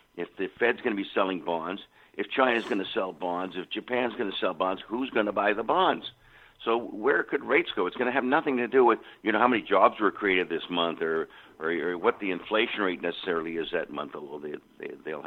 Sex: male